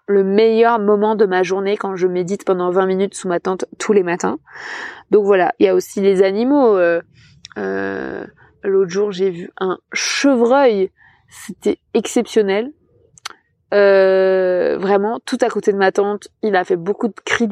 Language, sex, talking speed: French, female, 170 wpm